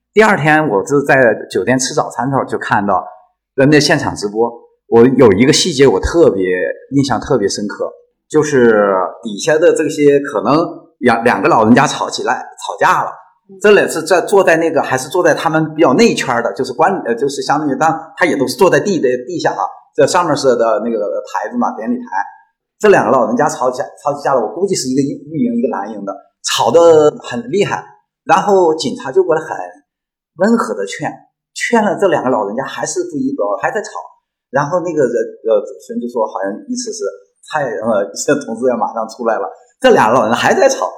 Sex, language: male, Chinese